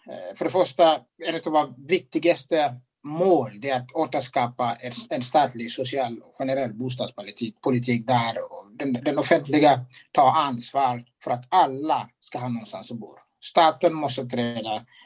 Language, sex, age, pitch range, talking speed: English, male, 60-79, 125-165 Hz, 130 wpm